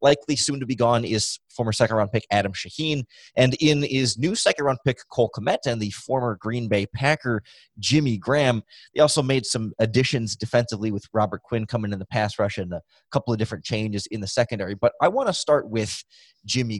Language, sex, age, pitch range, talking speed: English, male, 20-39, 105-135 Hz, 205 wpm